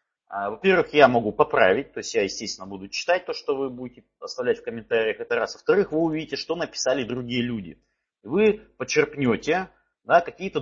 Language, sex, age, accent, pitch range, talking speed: Russian, male, 30-49, native, 125-205 Hz, 165 wpm